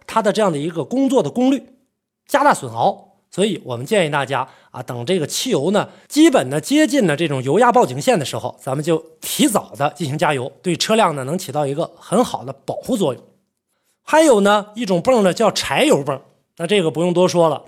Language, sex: Chinese, male